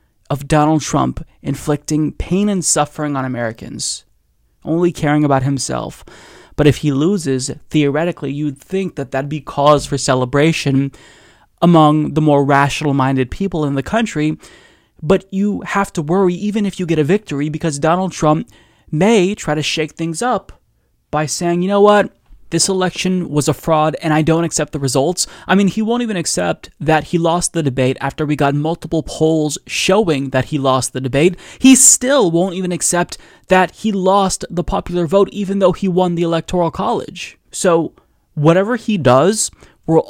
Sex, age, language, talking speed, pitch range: male, 20-39, English, 175 wpm, 145-185 Hz